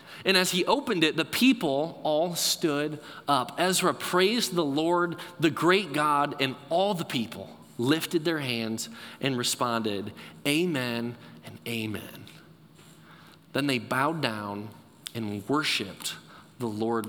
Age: 30-49